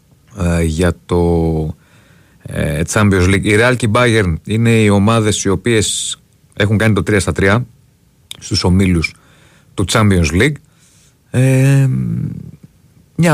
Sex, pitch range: male, 85-115 Hz